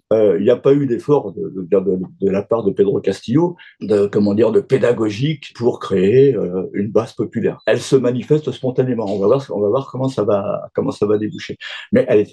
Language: French